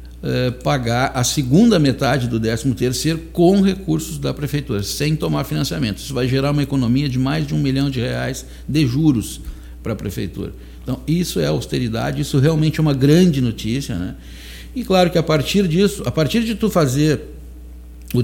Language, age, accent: Portuguese, 60-79, Brazilian